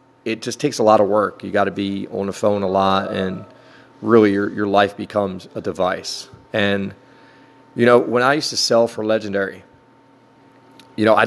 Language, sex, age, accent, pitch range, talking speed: English, male, 30-49, American, 100-120 Hz, 195 wpm